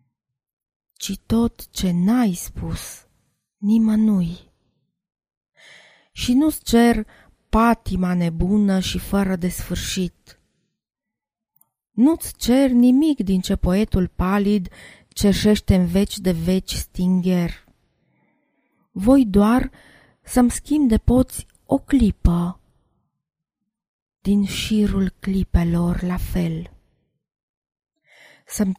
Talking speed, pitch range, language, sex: 90 wpm, 185-230 Hz, Romanian, female